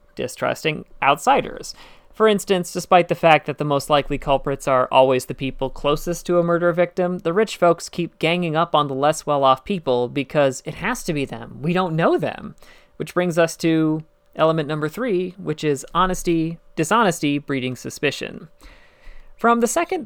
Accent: American